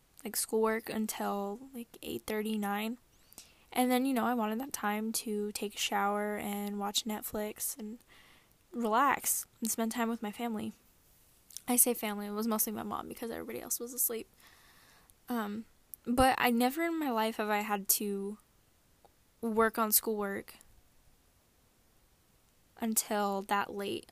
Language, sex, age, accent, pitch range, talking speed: English, female, 10-29, American, 205-230 Hz, 150 wpm